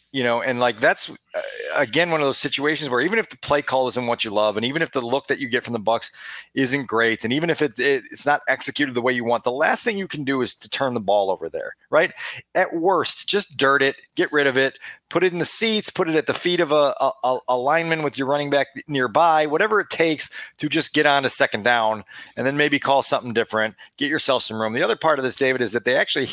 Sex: male